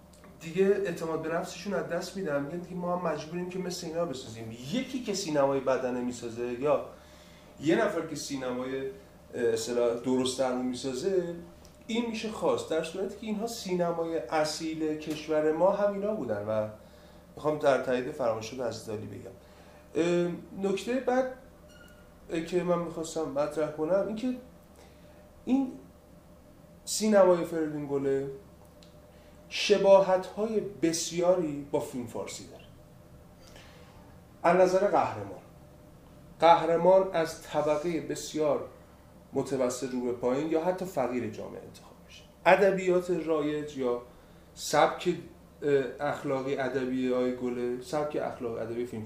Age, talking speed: 30-49, 115 wpm